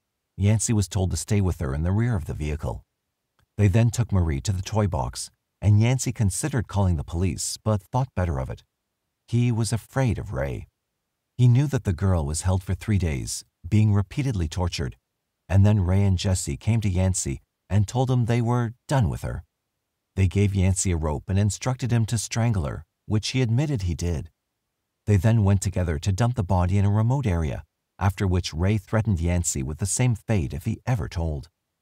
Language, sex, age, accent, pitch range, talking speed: English, male, 50-69, American, 85-115 Hz, 200 wpm